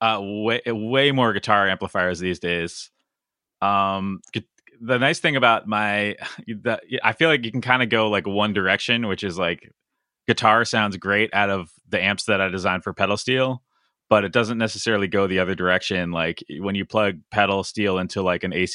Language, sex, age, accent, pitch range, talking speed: English, male, 30-49, American, 90-110 Hz, 190 wpm